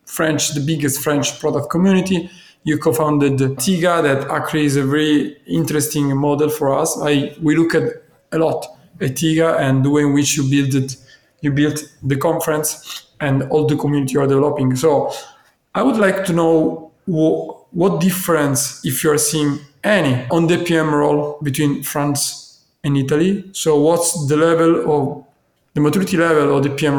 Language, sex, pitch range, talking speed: Italian, male, 140-160 Hz, 160 wpm